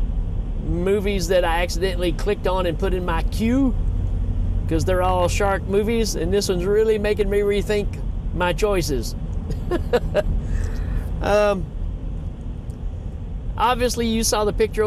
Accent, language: American, English